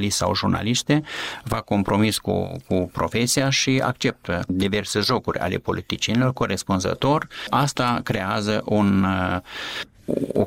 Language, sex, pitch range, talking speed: Romanian, male, 95-120 Hz, 105 wpm